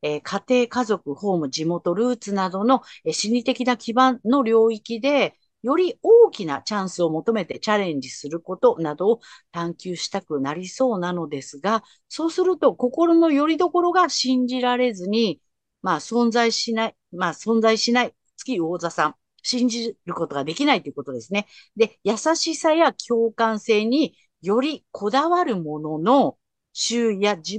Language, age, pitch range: Japanese, 50-69, 180-260 Hz